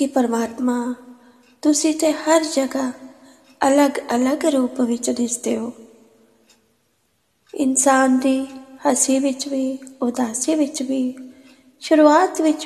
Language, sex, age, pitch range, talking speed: Punjabi, female, 20-39, 245-280 Hz, 105 wpm